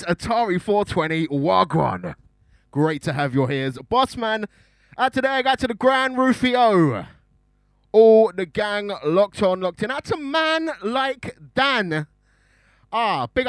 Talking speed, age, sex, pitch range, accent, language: 140 wpm, 20-39, male, 140-220 Hz, British, English